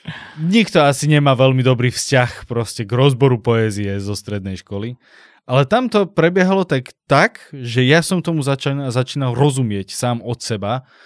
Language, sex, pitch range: Slovak, male, 110-130 Hz